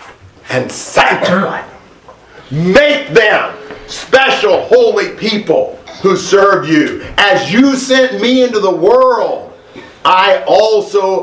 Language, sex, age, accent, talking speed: English, male, 50-69, American, 100 wpm